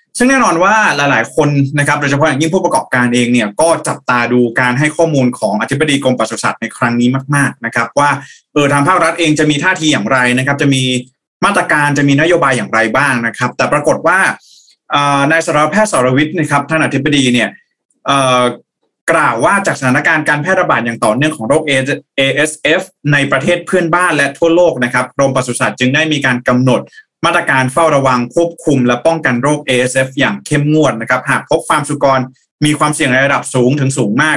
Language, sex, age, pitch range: Thai, male, 20-39, 125-155 Hz